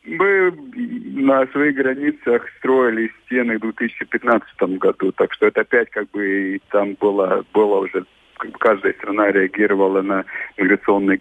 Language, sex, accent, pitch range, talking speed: Russian, male, native, 100-125 Hz, 135 wpm